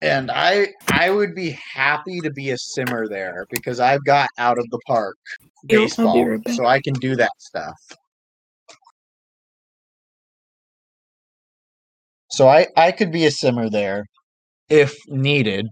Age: 20-39